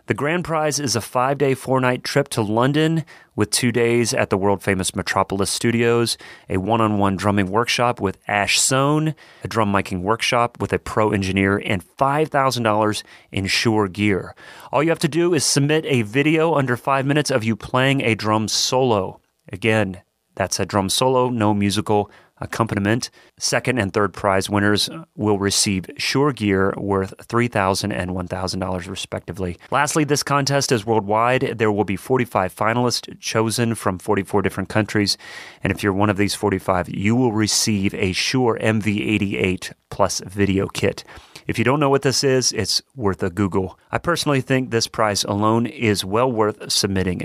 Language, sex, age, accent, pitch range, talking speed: English, male, 30-49, American, 100-130 Hz, 165 wpm